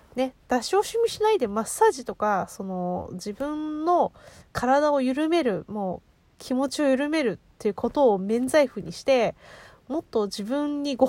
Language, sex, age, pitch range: Japanese, female, 20-39, 210-290 Hz